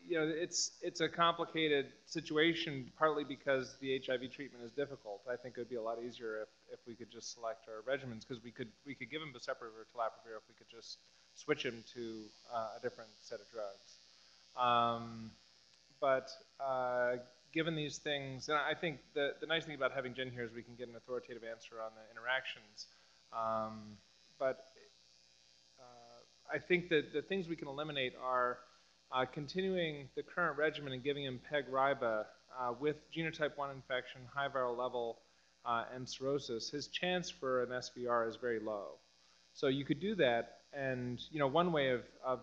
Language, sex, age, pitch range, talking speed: English, male, 30-49, 120-145 Hz, 185 wpm